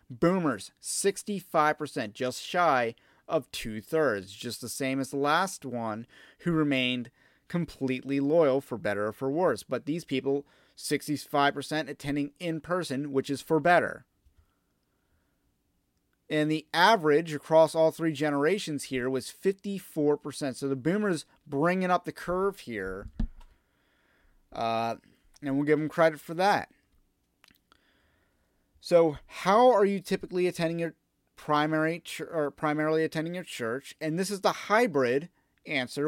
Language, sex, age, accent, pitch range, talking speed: English, male, 30-49, American, 135-170 Hz, 130 wpm